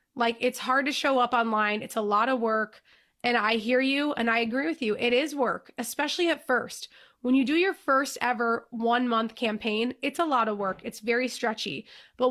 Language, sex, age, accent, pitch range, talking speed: English, female, 20-39, American, 225-275 Hz, 220 wpm